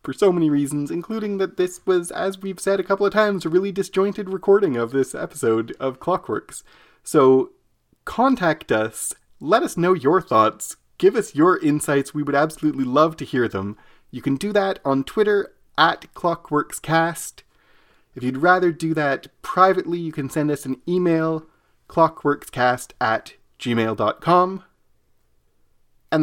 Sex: male